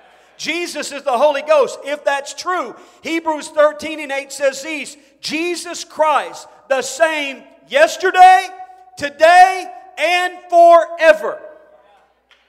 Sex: male